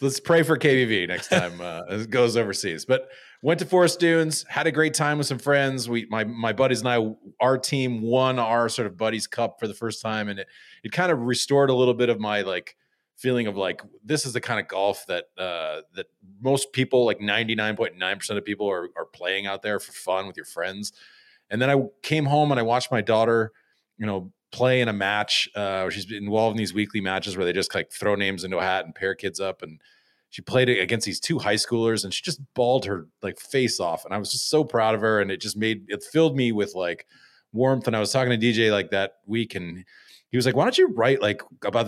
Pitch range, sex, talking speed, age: 100-130 Hz, male, 250 wpm, 30-49